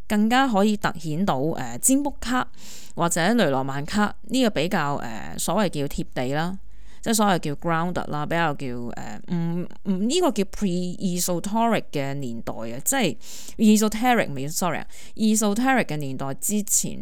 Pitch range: 150-215 Hz